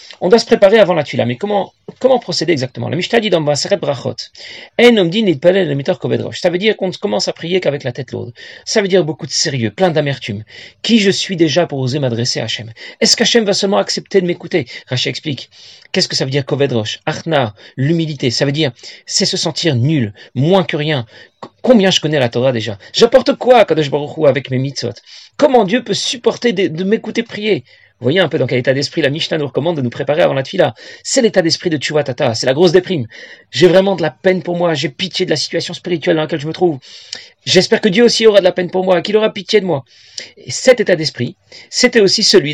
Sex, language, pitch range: male, French, 145-200 Hz